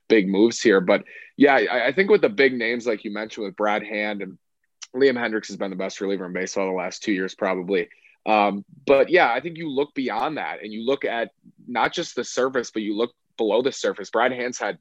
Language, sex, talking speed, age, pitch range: English, male, 235 wpm, 20-39, 105-125 Hz